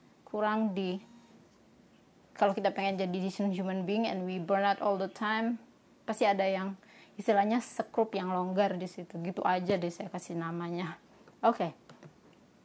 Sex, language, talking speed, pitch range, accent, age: female, Indonesian, 145 wpm, 190-220 Hz, native, 20-39